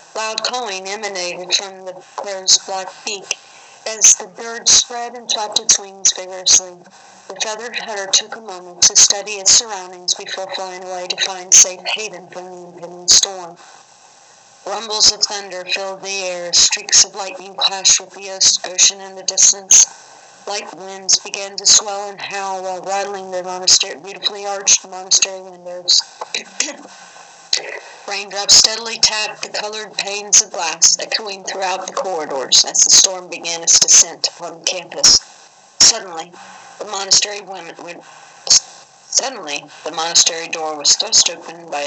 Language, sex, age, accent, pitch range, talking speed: English, female, 40-59, American, 180-205 Hz, 145 wpm